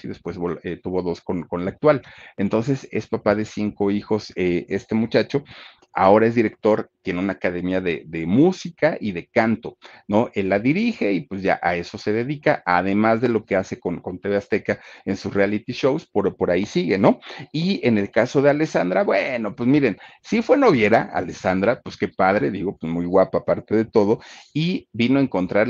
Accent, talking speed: Mexican, 200 wpm